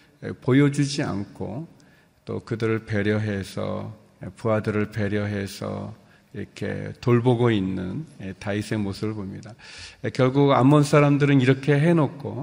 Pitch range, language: 105-140 Hz, Korean